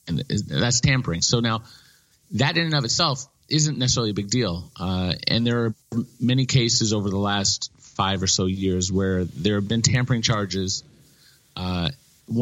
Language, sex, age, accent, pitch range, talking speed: English, male, 30-49, American, 95-120 Hz, 170 wpm